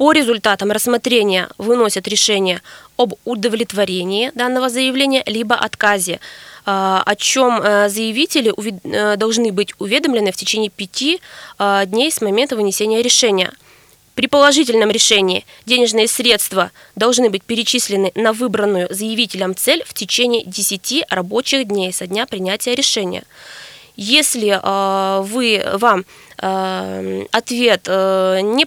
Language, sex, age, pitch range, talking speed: Russian, female, 20-39, 195-245 Hz, 105 wpm